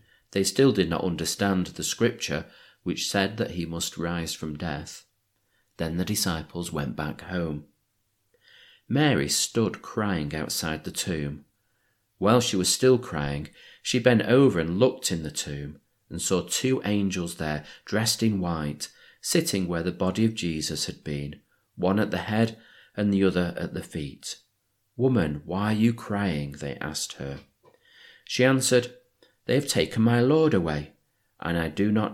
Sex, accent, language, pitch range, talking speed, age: male, British, English, 80-110 Hz, 160 wpm, 40-59